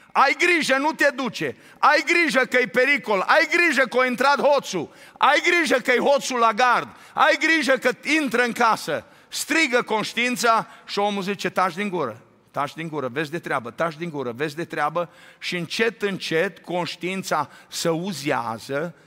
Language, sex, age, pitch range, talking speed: Romanian, male, 50-69, 165-225 Hz, 175 wpm